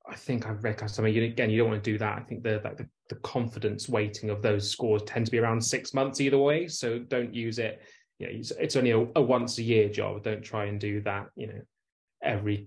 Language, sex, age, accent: English, male, 20-39, British